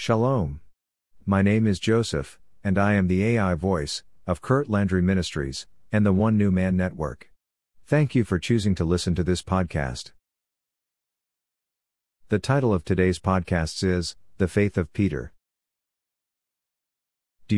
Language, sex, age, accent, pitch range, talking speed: English, male, 50-69, American, 85-105 Hz, 140 wpm